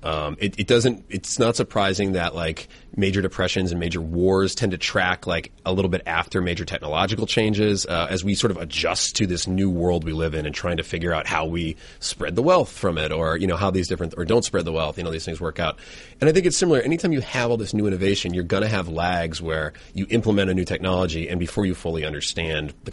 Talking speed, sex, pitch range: 250 wpm, male, 85-105 Hz